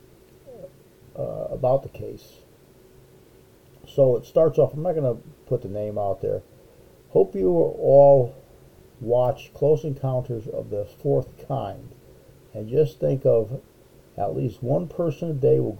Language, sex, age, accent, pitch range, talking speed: English, male, 50-69, American, 110-140 Hz, 145 wpm